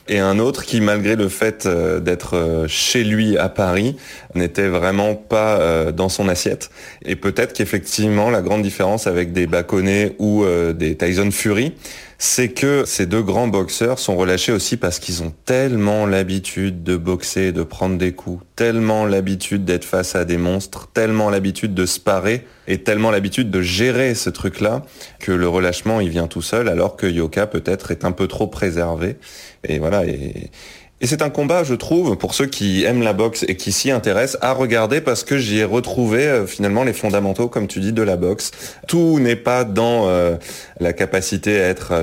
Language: French